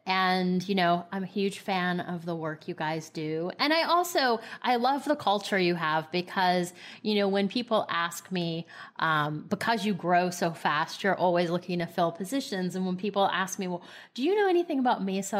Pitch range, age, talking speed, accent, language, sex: 170-215 Hz, 30-49, 205 wpm, American, English, female